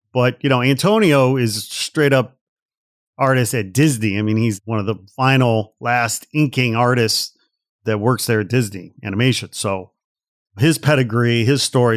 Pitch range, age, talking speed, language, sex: 115-140 Hz, 40-59, 150 wpm, English, male